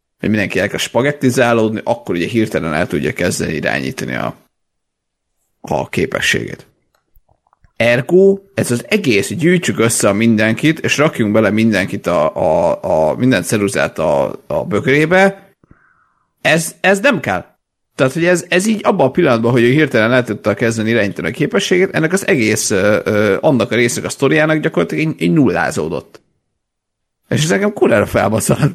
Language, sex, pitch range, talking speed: Hungarian, male, 100-145 Hz, 150 wpm